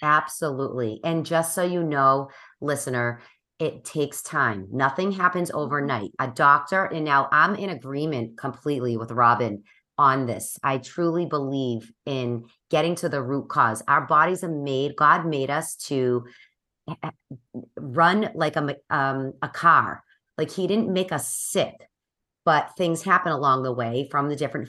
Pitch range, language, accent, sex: 130-155 Hz, English, American, female